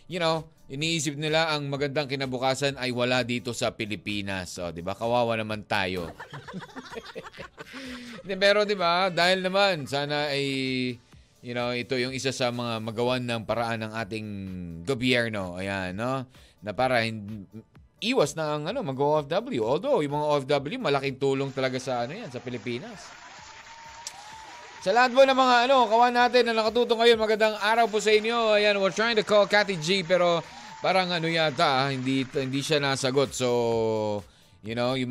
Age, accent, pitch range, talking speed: 20-39, native, 120-170 Hz, 160 wpm